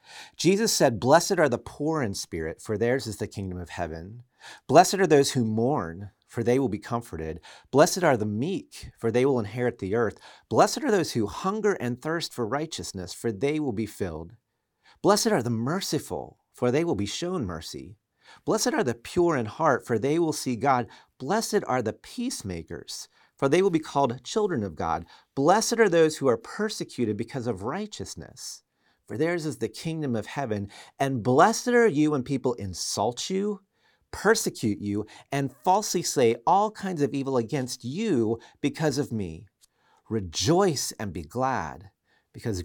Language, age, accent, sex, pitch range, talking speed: English, 40-59, American, male, 110-170 Hz, 175 wpm